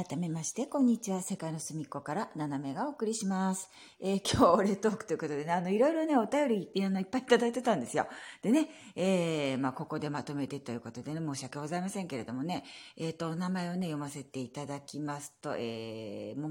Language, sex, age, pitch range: Japanese, female, 40-59, 150-225 Hz